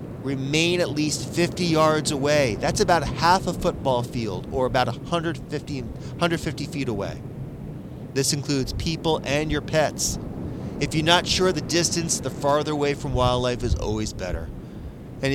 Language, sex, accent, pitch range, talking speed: English, male, American, 130-165 Hz, 155 wpm